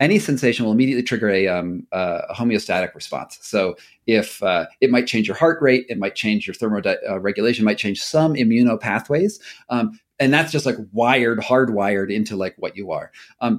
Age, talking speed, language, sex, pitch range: 40-59, 185 wpm, English, male, 110-150 Hz